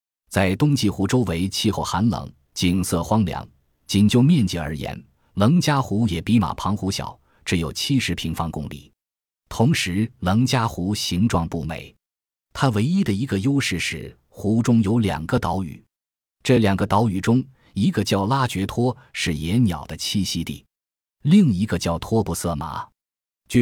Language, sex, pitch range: Chinese, male, 85-115 Hz